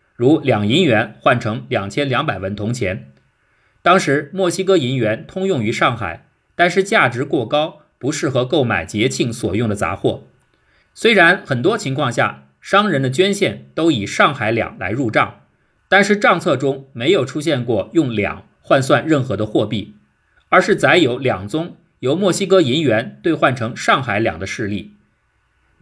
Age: 50-69